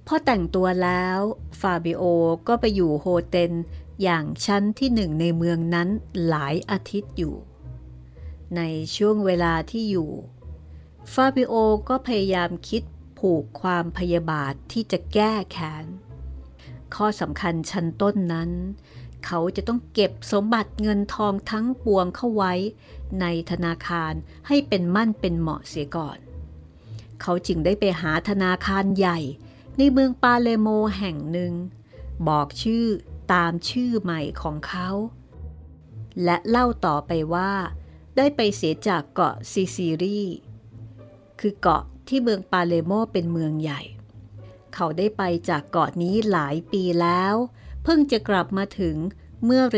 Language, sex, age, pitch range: Thai, female, 60-79, 150-205 Hz